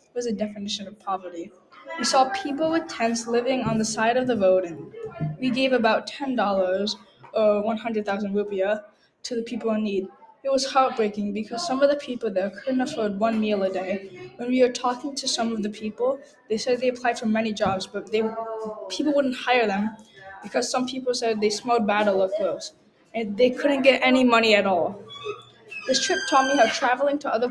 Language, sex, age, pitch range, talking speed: English, female, 10-29, 205-250 Hz, 205 wpm